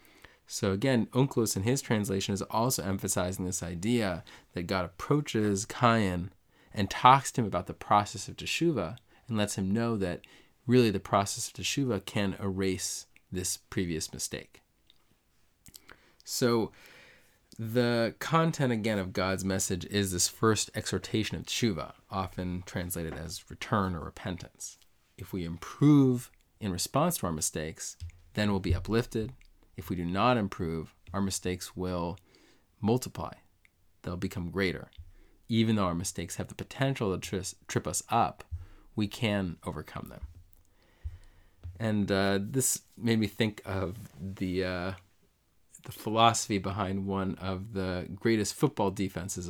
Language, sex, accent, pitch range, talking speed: English, male, American, 90-110 Hz, 140 wpm